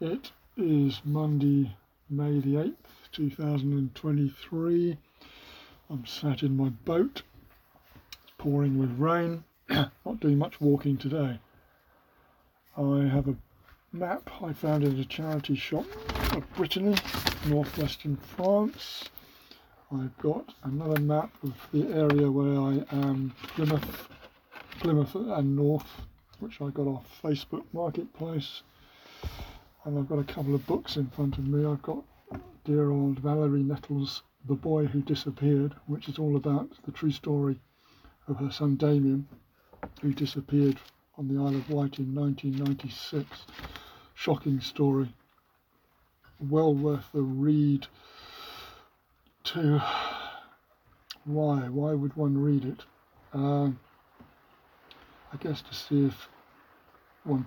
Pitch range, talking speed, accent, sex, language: 140-150 Hz, 120 wpm, British, male, English